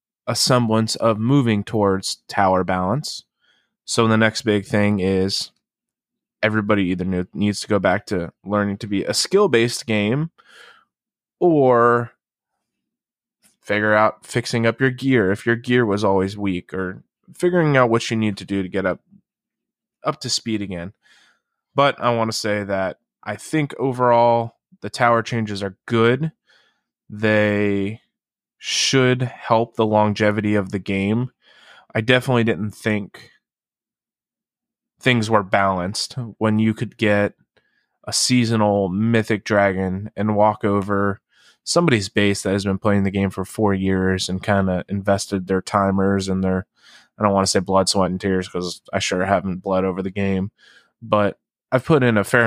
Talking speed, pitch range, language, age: 155 wpm, 95-115 Hz, English, 20-39